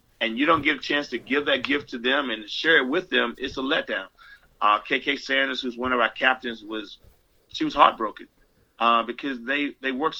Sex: male